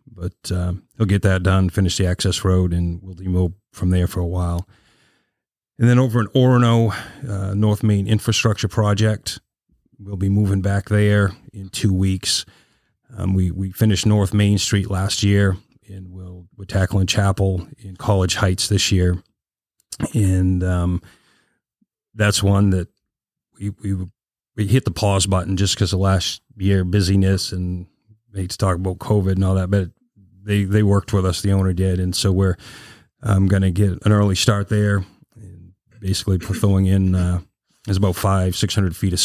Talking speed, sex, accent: 175 wpm, male, American